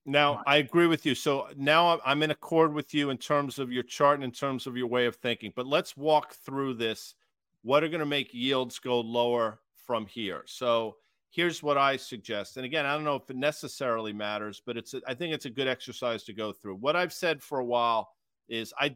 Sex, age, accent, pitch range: male, 40-59, American, 115-145 Hz